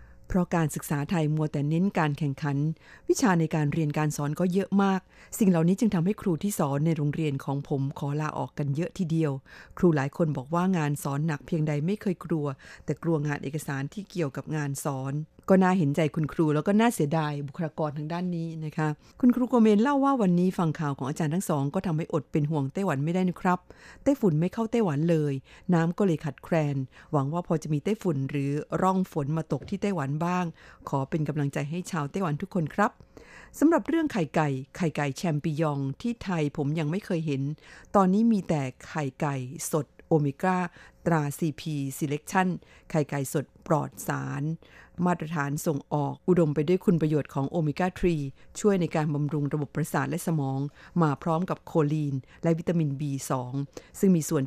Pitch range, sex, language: 145-180 Hz, female, Thai